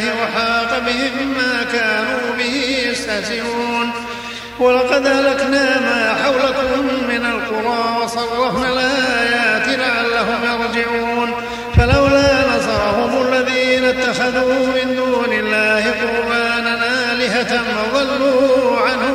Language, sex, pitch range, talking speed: Arabic, male, 235-255 Hz, 80 wpm